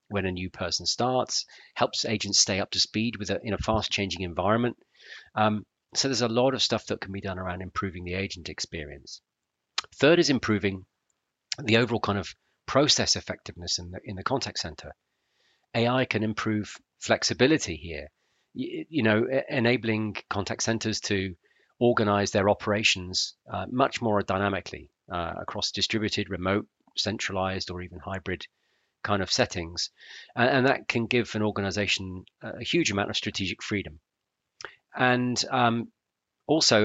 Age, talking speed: 40-59, 155 wpm